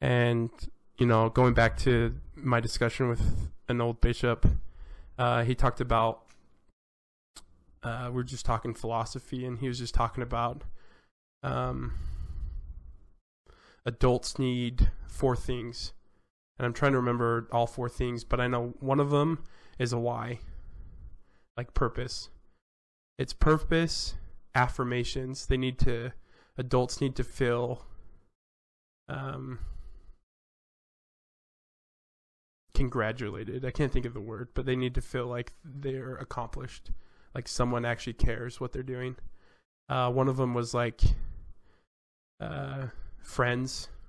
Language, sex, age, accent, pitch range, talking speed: English, male, 20-39, American, 110-130 Hz, 125 wpm